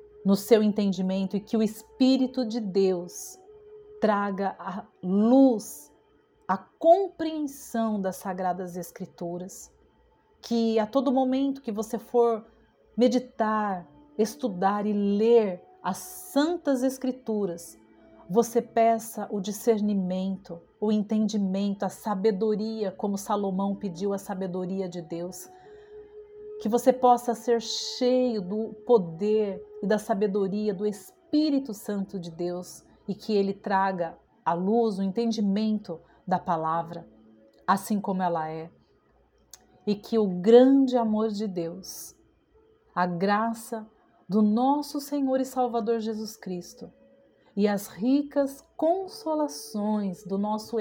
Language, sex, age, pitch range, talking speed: Portuguese, female, 40-59, 190-235 Hz, 115 wpm